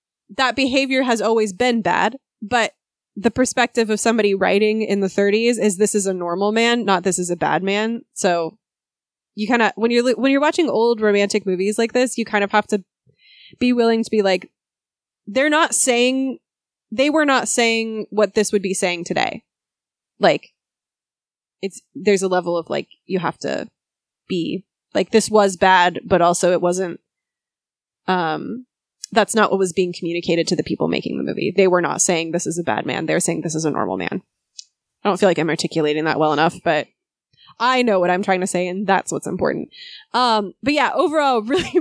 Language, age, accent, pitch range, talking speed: English, 20-39, American, 185-245 Hz, 200 wpm